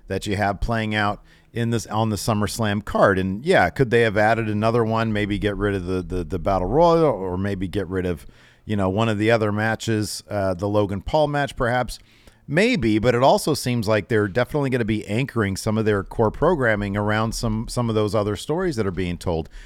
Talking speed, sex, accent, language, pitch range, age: 225 wpm, male, American, English, 100-135 Hz, 40-59